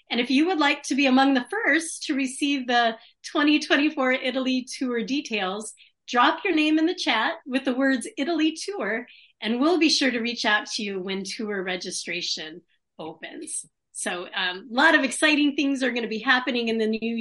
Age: 30-49